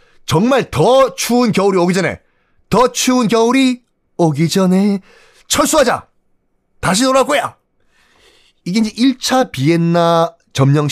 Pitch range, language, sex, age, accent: 145-215 Hz, Korean, male, 30-49, native